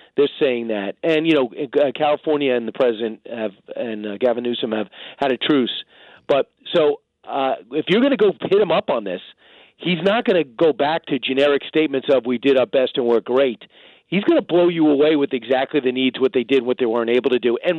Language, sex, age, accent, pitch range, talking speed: English, male, 40-59, American, 130-205 Hz, 235 wpm